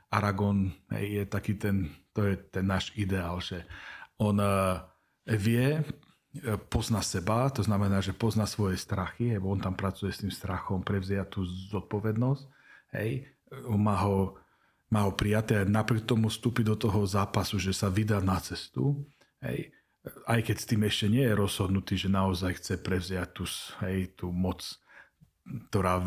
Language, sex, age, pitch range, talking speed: Slovak, male, 40-59, 95-110 Hz, 155 wpm